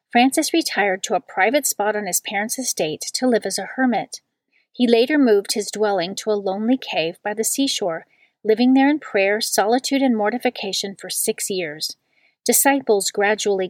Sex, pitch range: female, 200-255 Hz